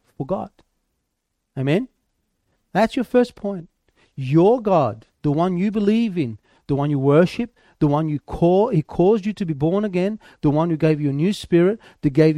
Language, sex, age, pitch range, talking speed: English, male, 30-49, 150-215 Hz, 185 wpm